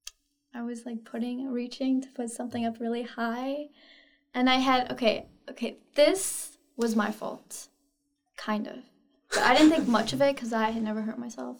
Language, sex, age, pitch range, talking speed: English, female, 10-29, 230-285 Hz, 180 wpm